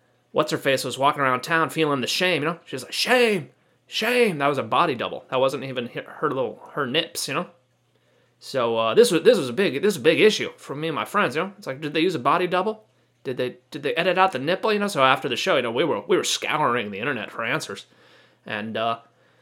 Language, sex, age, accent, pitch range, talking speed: English, male, 30-49, American, 130-170 Hz, 260 wpm